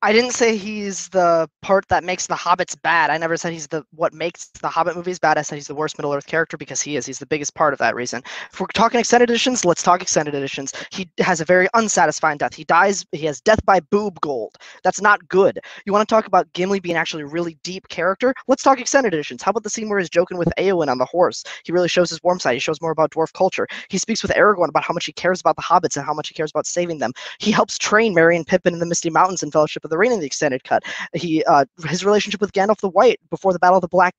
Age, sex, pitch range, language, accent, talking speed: 20-39, male, 160-195 Hz, English, American, 275 wpm